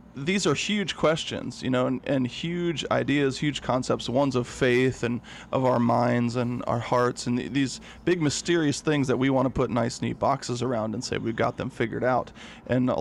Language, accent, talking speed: English, American, 210 wpm